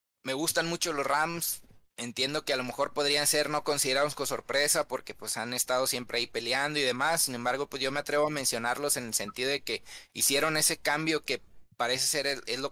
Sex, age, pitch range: male, 20-39, 125-145 Hz